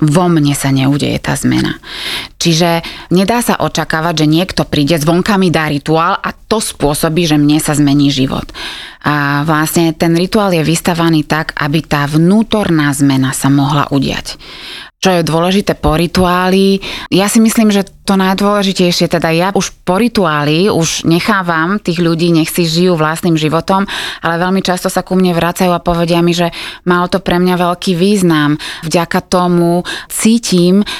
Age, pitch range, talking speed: 20-39, 150-185 Hz, 165 wpm